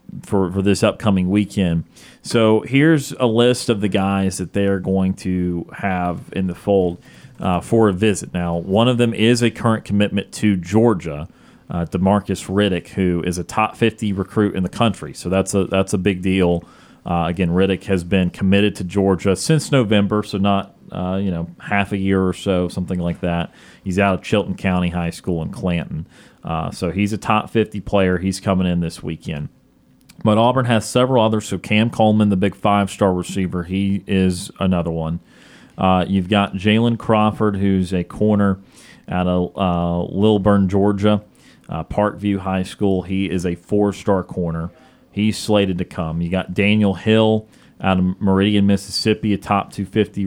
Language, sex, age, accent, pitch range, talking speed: English, male, 30-49, American, 90-105 Hz, 180 wpm